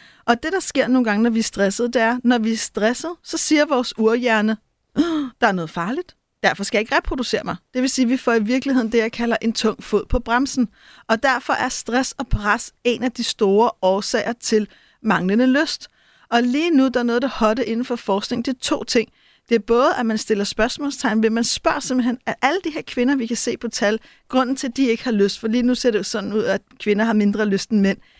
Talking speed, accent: 250 wpm, native